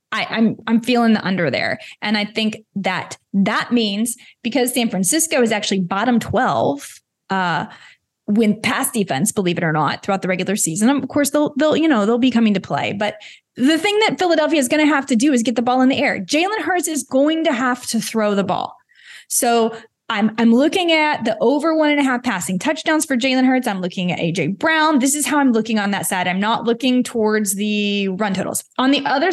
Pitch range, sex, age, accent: 215-290 Hz, female, 20-39, American